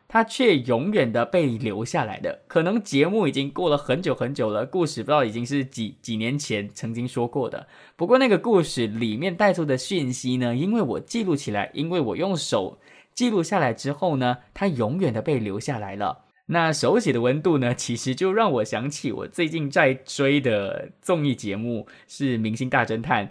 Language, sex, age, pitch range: English, male, 20-39, 115-155 Hz